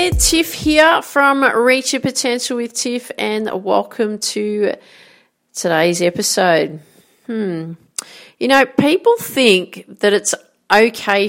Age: 40-59